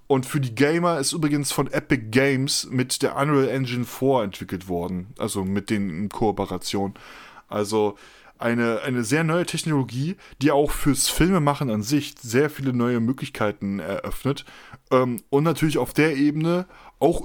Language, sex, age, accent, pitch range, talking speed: German, male, 20-39, German, 115-145 Hz, 150 wpm